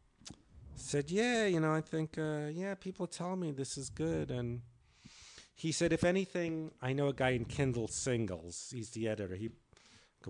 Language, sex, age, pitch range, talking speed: English, male, 50-69, 115-140 Hz, 180 wpm